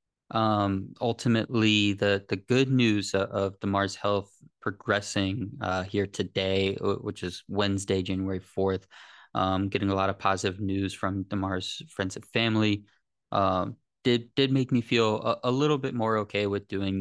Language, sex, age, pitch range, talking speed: English, male, 20-39, 95-110 Hz, 165 wpm